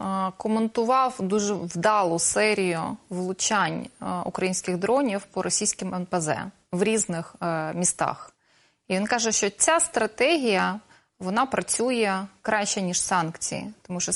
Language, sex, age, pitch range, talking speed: Russian, female, 20-39, 180-230 Hz, 110 wpm